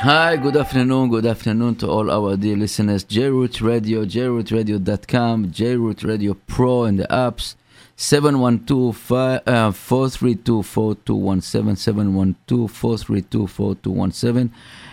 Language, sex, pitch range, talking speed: English, male, 100-120 Hz, 185 wpm